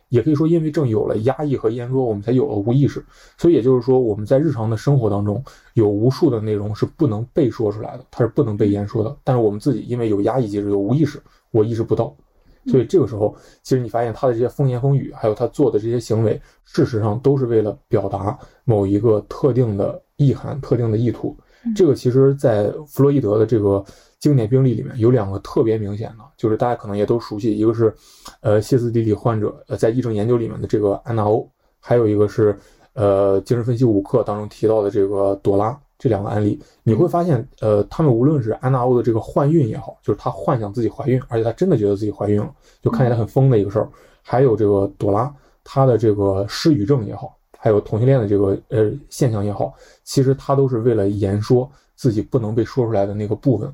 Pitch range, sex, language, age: 105-135 Hz, male, Chinese, 20-39